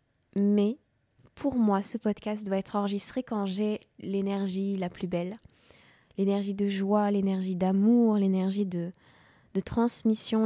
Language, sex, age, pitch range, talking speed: French, female, 20-39, 190-220 Hz, 130 wpm